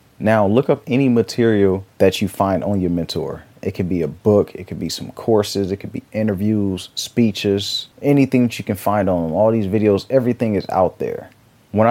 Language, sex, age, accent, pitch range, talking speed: English, male, 30-49, American, 95-115 Hz, 205 wpm